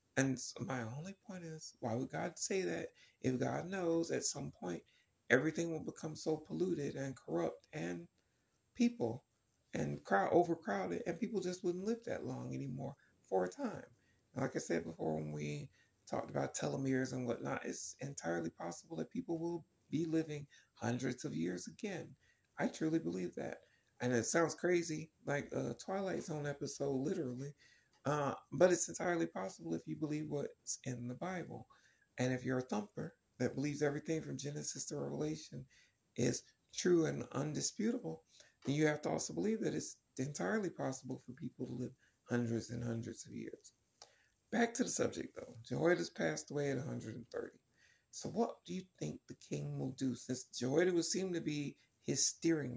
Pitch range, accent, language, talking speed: 115-165 Hz, American, English, 170 wpm